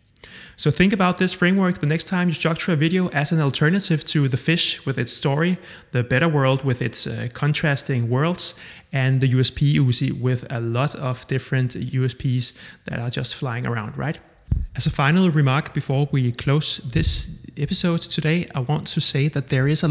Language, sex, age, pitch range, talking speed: English, male, 30-49, 125-155 Hz, 195 wpm